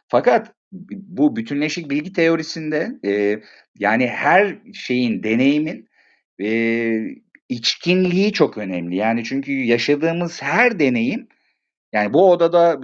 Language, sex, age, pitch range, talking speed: Turkish, male, 50-69, 115-170 Hz, 95 wpm